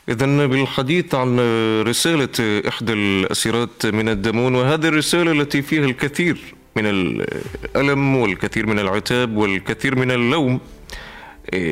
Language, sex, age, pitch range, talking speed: Arabic, male, 30-49, 105-130 Hz, 110 wpm